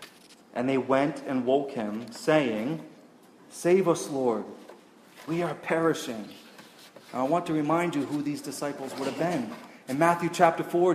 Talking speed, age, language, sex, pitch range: 155 wpm, 30-49, English, male, 145-200 Hz